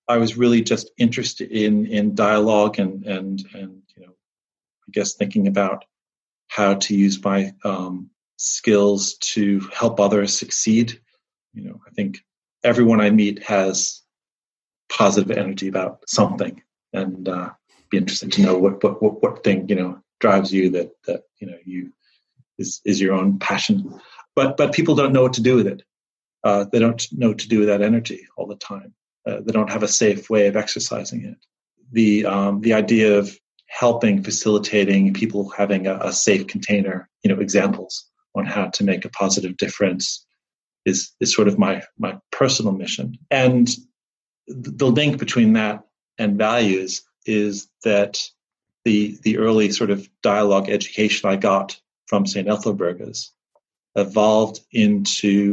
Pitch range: 100-110 Hz